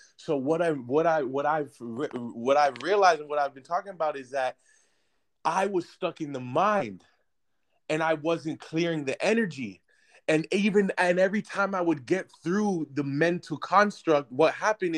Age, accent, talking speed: 20-39, American, 180 wpm